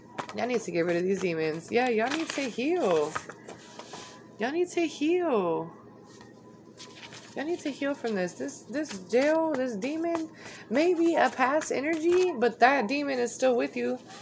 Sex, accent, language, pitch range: female, American, English, 195-270 Hz